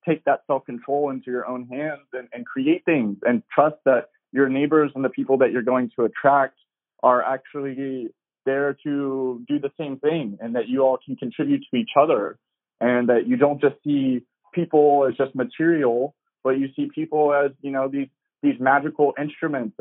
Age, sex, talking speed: 20-39, male, 190 wpm